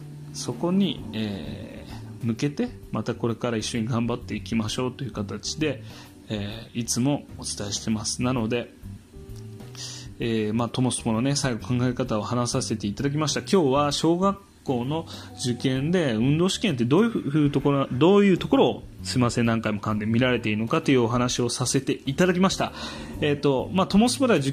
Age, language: 20-39, Japanese